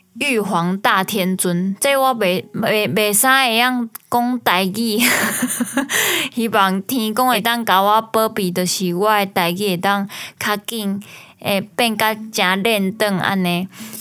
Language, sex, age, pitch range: Chinese, female, 20-39, 180-230 Hz